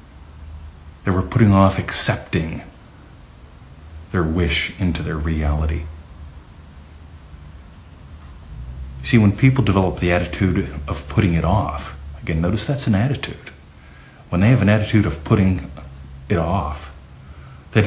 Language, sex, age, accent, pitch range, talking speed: English, male, 40-59, American, 75-95 Hz, 120 wpm